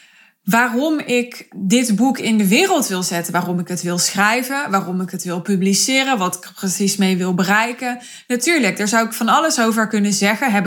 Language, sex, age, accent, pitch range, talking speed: Dutch, female, 20-39, Dutch, 195-255 Hz, 195 wpm